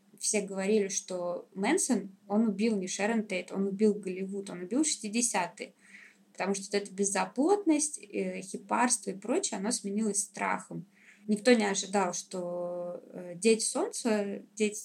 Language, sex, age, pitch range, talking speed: Russian, female, 20-39, 195-220 Hz, 135 wpm